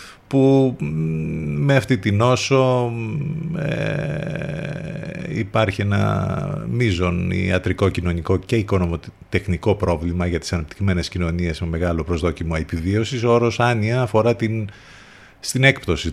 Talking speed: 105 wpm